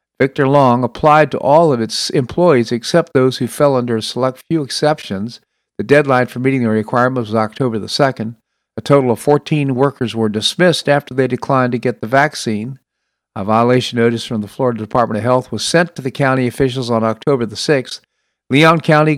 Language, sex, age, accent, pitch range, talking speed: English, male, 50-69, American, 110-145 Hz, 195 wpm